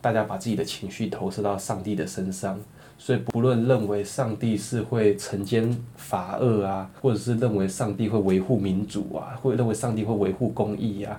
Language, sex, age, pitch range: Chinese, male, 20-39, 100-120 Hz